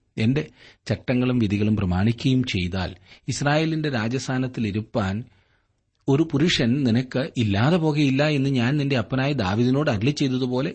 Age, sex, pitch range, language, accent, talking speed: 30-49, male, 90-130 Hz, Malayalam, native, 110 wpm